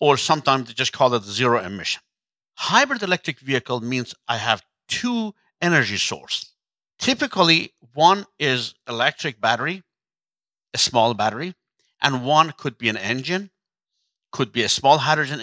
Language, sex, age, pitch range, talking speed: English, male, 60-79, 130-195 Hz, 140 wpm